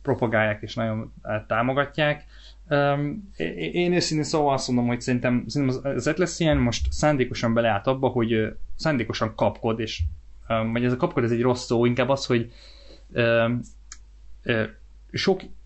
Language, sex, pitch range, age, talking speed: Hungarian, male, 105-125 Hz, 20-39, 130 wpm